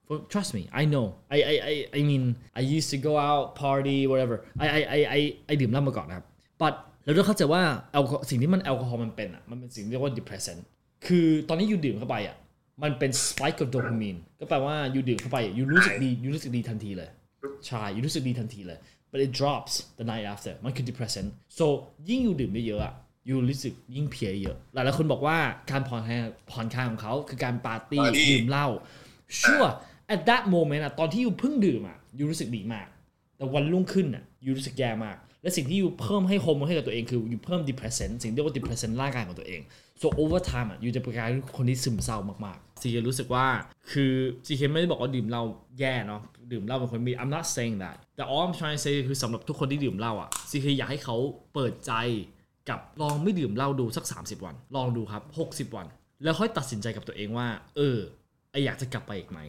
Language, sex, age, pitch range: Thai, male, 20-39, 115-145 Hz